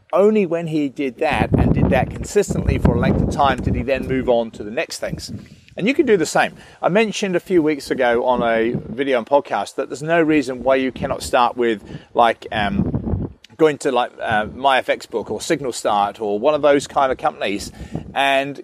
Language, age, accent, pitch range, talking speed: English, 40-59, British, 125-160 Hz, 215 wpm